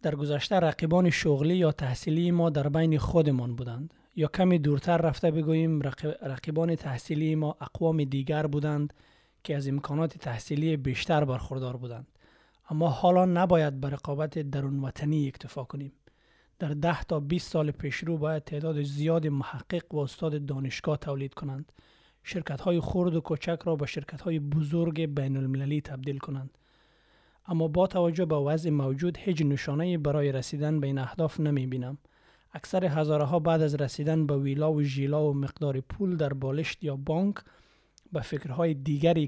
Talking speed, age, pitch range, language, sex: 145 wpm, 30-49, 140-160 Hz, Persian, male